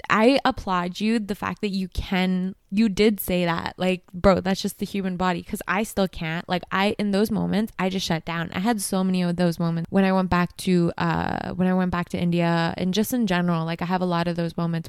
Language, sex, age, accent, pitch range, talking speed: English, female, 20-39, American, 175-205 Hz, 255 wpm